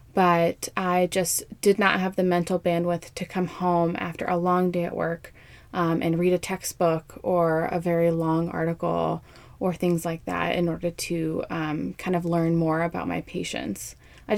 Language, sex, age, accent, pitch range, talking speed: English, female, 20-39, American, 170-205 Hz, 185 wpm